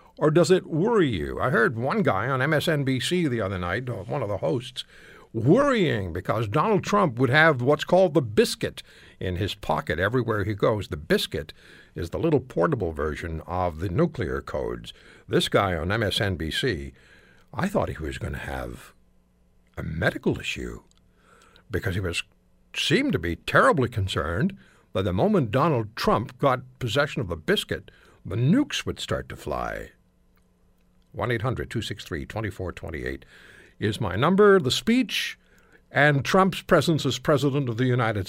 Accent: American